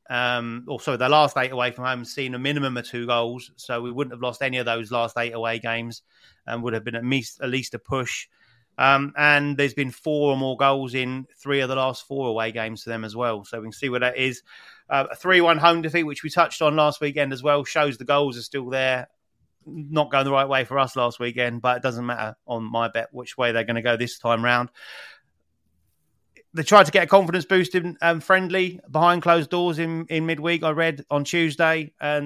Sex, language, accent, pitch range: male, English, British, 120-150 Hz